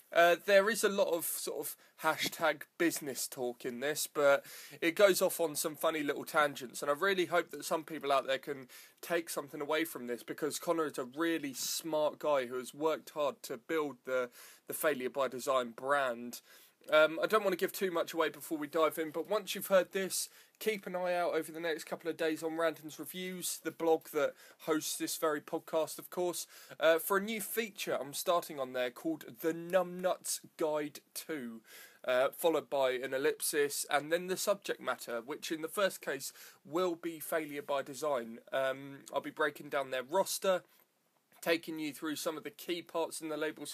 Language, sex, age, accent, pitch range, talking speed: English, male, 20-39, British, 150-180 Hz, 205 wpm